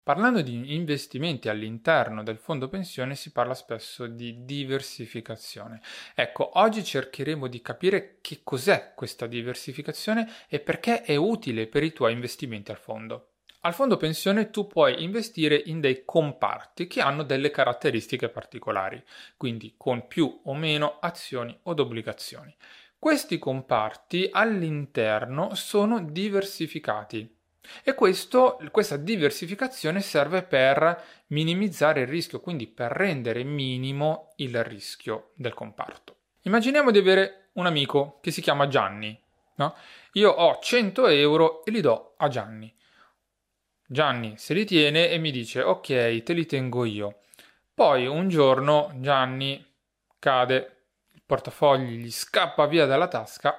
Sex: male